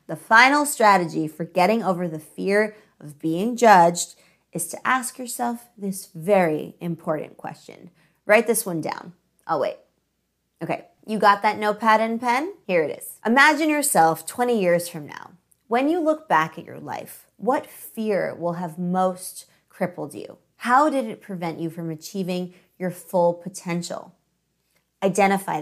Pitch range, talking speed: 175-230 Hz, 150 wpm